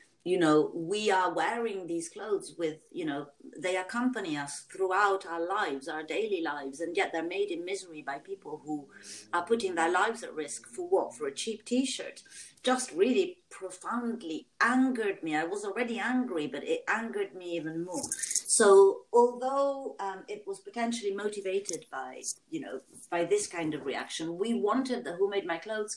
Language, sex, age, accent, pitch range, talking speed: English, female, 40-59, French, 170-275 Hz, 180 wpm